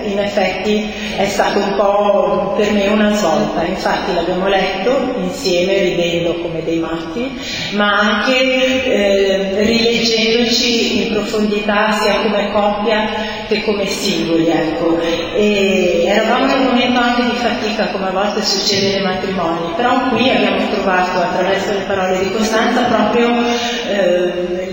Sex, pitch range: female, 185-220 Hz